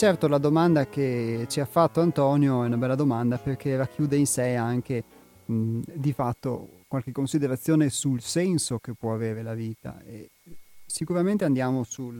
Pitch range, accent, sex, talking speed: 120-145 Hz, native, male, 150 wpm